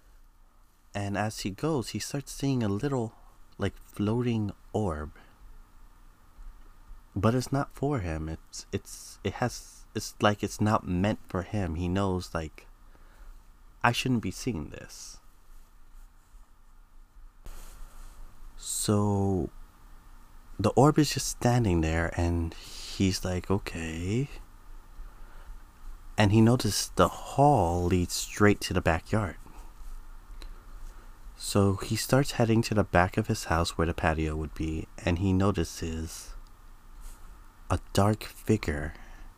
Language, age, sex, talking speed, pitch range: English, 30-49, male, 120 wpm, 80-105 Hz